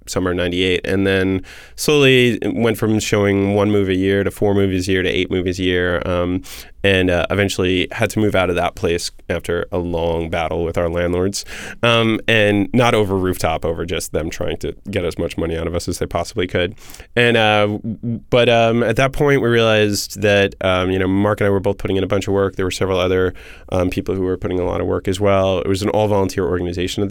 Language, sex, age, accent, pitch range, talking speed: English, male, 20-39, American, 90-100 Hz, 235 wpm